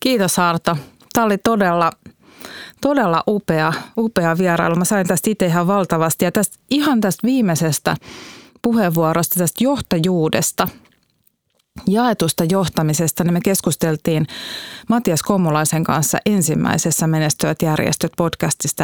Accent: native